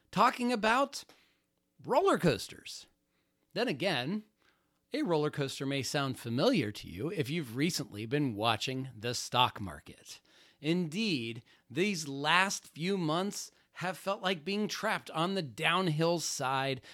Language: English